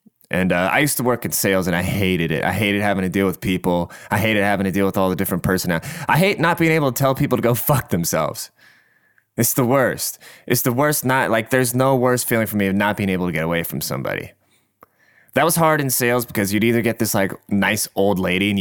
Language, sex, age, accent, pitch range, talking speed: English, male, 20-39, American, 95-125 Hz, 255 wpm